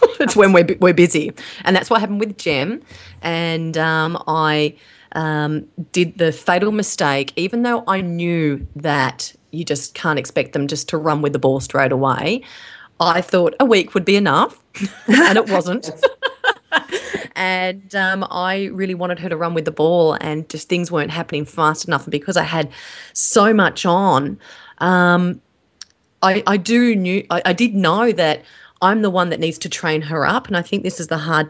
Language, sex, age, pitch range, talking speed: English, female, 30-49, 155-190 Hz, 185 wpm